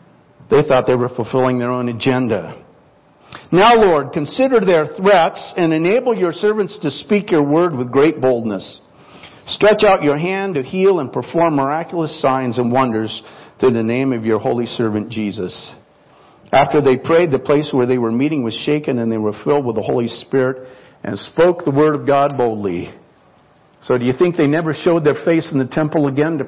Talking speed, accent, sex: 190 wpm, American, male